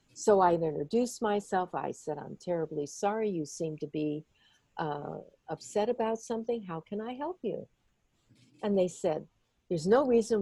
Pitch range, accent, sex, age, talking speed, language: 165-220 Hz, American, female, 60-79, 160 wpm, English